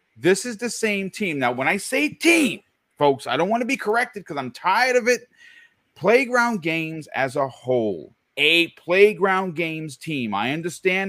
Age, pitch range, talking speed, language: 40-59, 125-205 Hz, 180 wpm, English